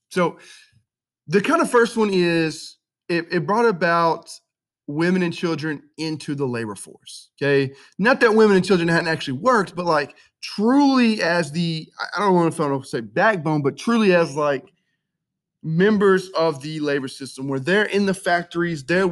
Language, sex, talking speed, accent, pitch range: English, male, 165 wpm, American, 145-190 Hz